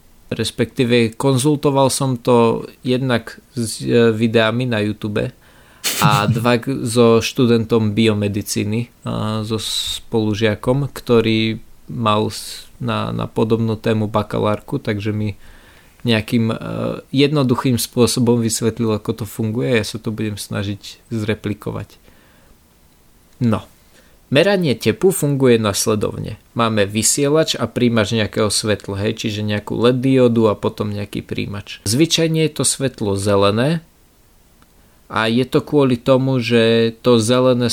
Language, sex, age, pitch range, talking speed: Slovak, male, 20-39, 110-125 Hz, 115 wpm